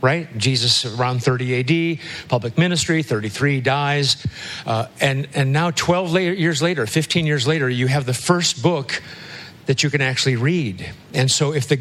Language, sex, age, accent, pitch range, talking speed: English, male, 50-69, American, 125-155 Hz, 175 wpm